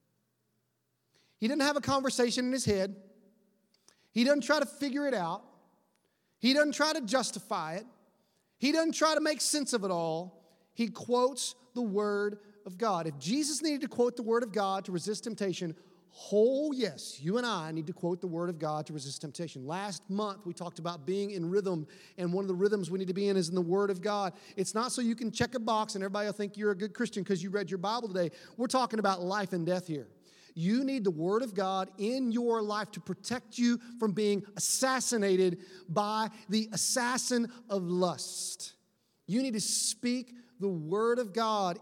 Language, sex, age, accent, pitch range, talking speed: English, male, 30-49, American, 185-245 Hz, 210 wpm